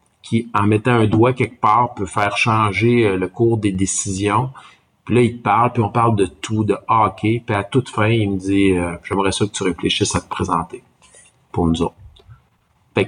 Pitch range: 90-115 Hz